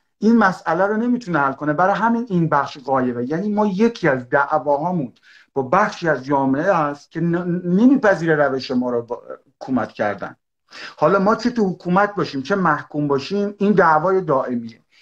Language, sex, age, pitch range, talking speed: Persian, male, 50-69, 140-190 Hz, 160 wpm